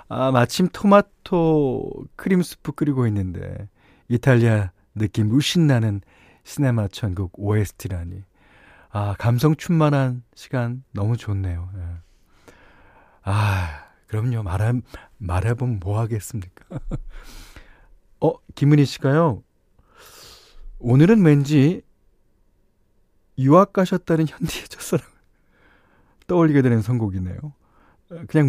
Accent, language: native, Korean